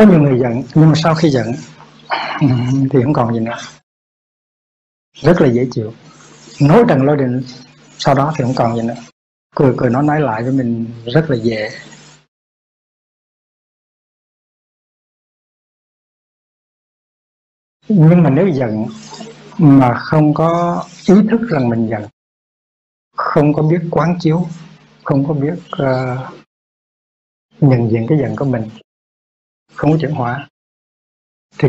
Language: Vietnamese